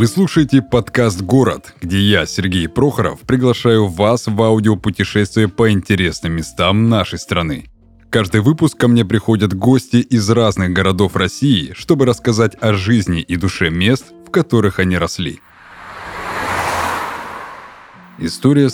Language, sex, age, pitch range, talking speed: Russian, male, 20-39, 100-125 Hz, 130 wpm